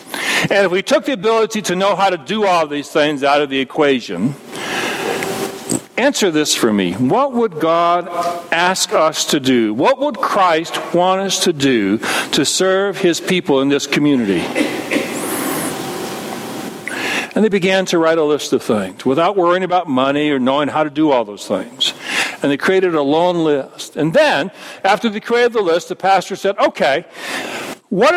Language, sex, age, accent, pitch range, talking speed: English, male, 60-79, American, 145-205 Hz, 175 wpm